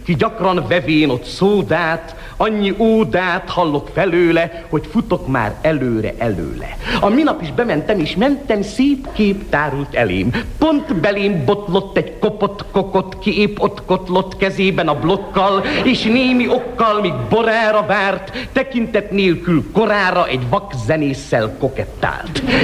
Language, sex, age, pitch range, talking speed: Hungarian, male, 50-69, 165-230 Hz, 125 wpm